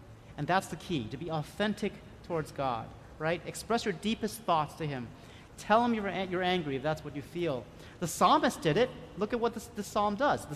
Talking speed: 220 wpm